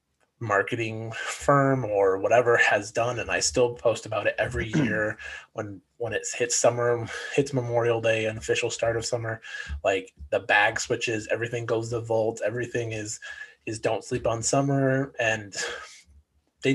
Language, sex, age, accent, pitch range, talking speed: English, male, 20-39, American, 105-130 Hz, 160 wpm